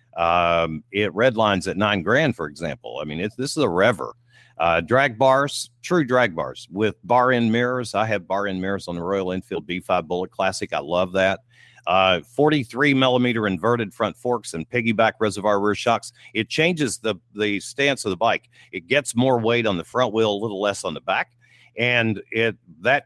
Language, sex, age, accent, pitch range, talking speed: English, male, 50-69, American, 95-125 Hz, 200 wpm